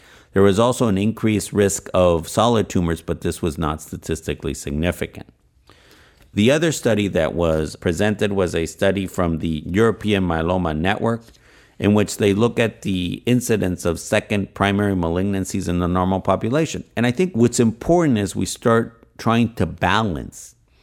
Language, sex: English, male